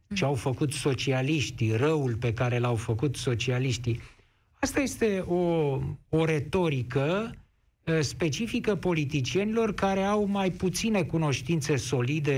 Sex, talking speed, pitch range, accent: male, 110 wpm, 120-185 Hz, native